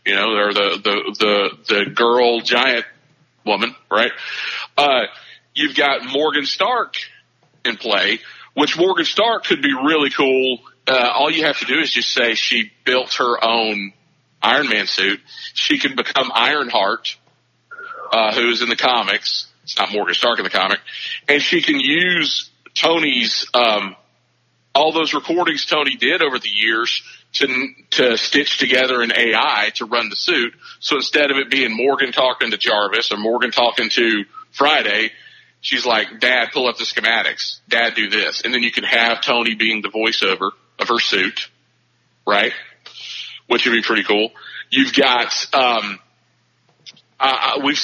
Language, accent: English, American